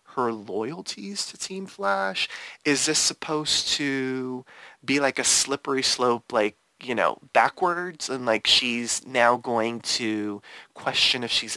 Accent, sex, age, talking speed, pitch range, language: American, male, 30-49, 140 wpm, 120-155 Hz, English